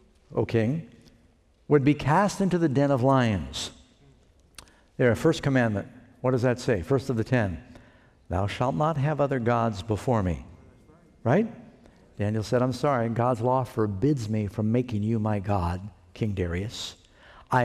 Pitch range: 115-155 Hz